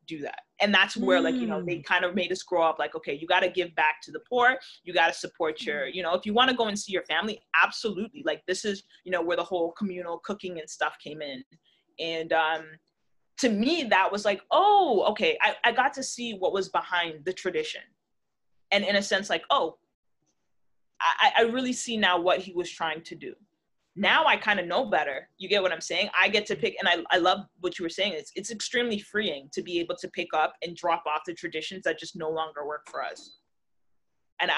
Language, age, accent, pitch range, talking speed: English, 30-49, American, 170-225 Hz, 240 wpm